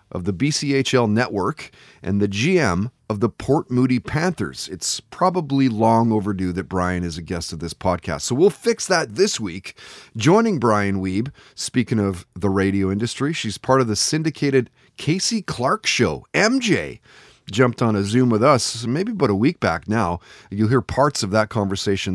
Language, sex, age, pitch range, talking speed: English, male, 30-49, 100-135 Hz, 175 wpm